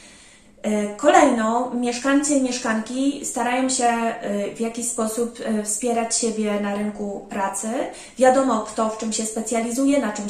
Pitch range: 220-265 Hz